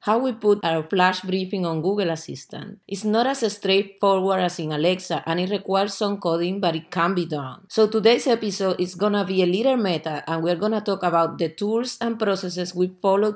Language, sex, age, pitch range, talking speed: English, female, 30-49, 175-210 Hz, 215 wpm